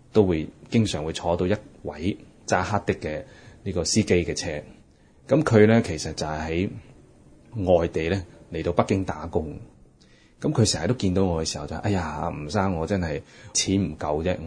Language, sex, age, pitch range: Chinese, male, 20-39, 85-110 Hz